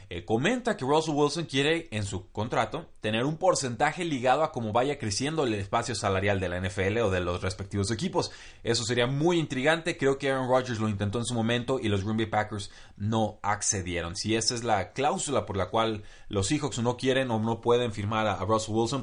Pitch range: 100-130 Hz